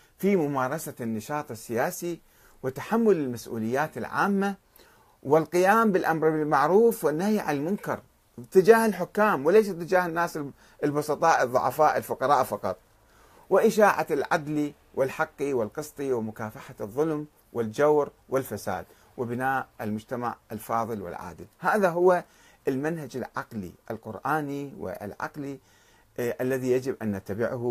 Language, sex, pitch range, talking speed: Arabic, male, 115-155 Hz, 95 wpm